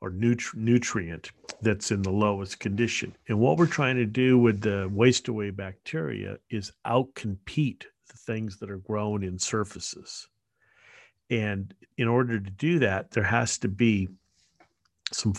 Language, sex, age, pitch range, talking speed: English, male, 50-69, 100-120 Hz, 150 wpm